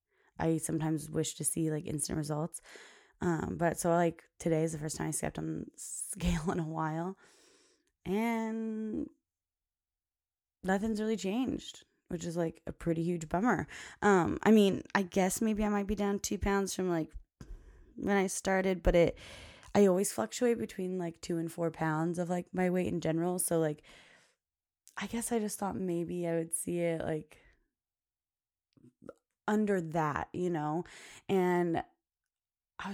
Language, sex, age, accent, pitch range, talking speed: English, female, 20-39, American, 160-215 Hz, 160 wpm